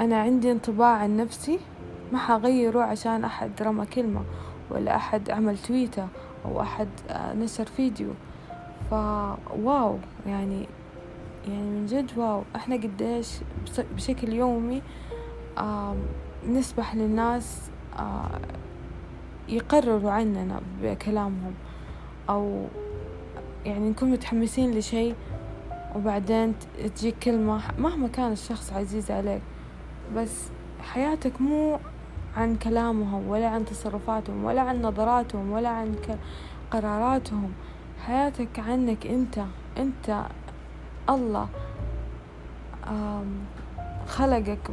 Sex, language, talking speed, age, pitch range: female, Arabic, 90 wpm, 20-39, 200-240 Hz